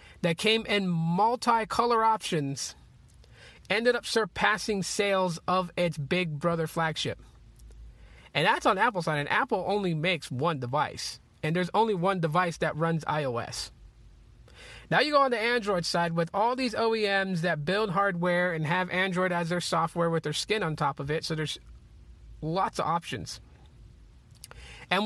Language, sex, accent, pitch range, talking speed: English, male, American, 155-200 Hz, 160 wpm